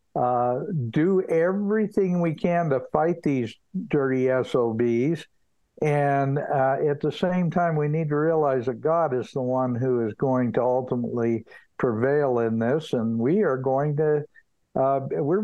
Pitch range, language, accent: 130-170 Hz, English, American